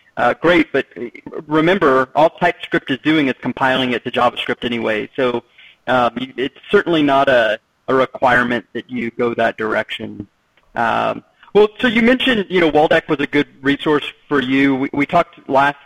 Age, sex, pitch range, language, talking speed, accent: 30-49, male, 125-150 Hz, English, 170 wpm, American